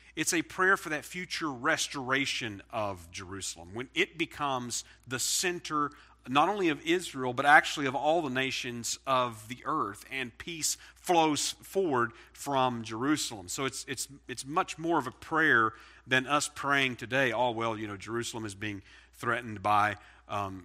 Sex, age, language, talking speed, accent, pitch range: male, 40-59, English, 165 wpm, American, 105-130 Hz